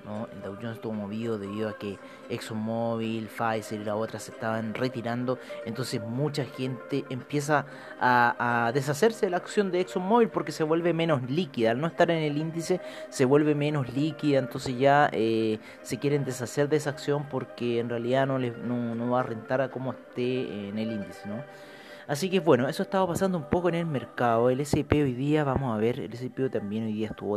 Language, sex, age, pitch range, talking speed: Spanish, male, 30-49, 110-145 Hz, 205 wpm